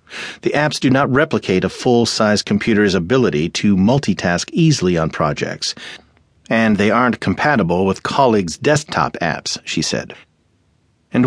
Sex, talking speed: male, 135 wpm